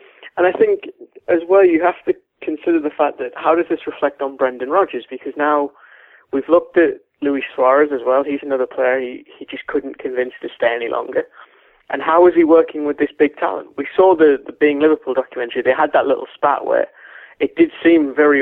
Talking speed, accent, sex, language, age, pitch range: 215 wpm, British, male, English, 20-39, 130-160 Hz